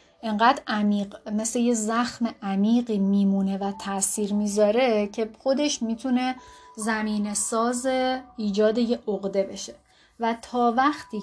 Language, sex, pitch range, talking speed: Persian, female, 200-250 Hz, 120 wpm